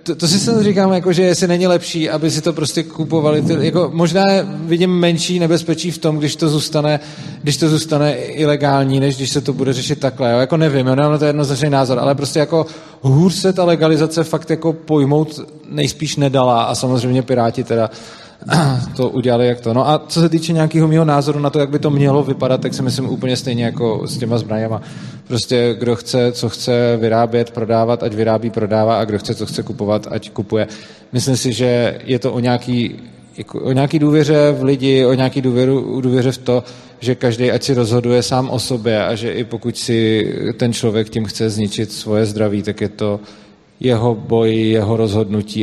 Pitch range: 110-145 Hz